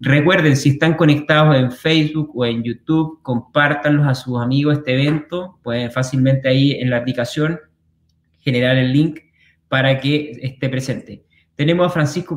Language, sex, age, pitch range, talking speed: Spanish, male, 20-39, 125-155 Hz, 150 wpm